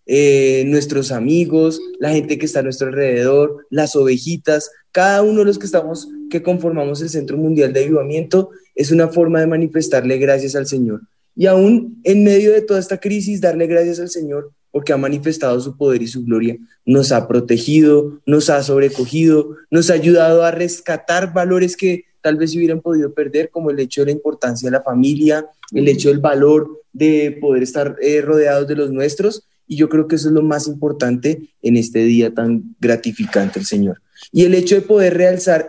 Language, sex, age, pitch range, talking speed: Spanish, male, 20-39, 140-170 Hz, 195 wpm